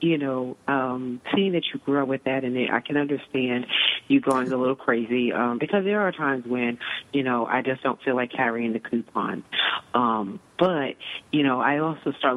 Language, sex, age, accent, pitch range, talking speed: English, female, 40-59, American, 125-145 Hz, 205 wpm